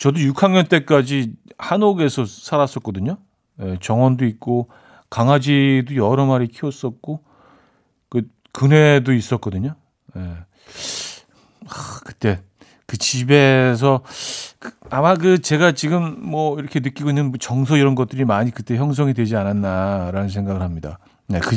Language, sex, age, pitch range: Korean, male, 40-59, 115-155 Hz